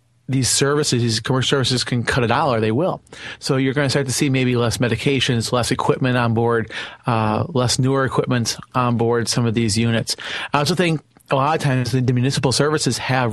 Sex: male